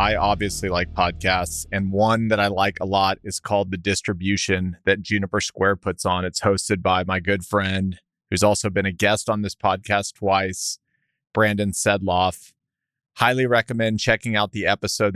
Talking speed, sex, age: 170 wpm, male, 30-49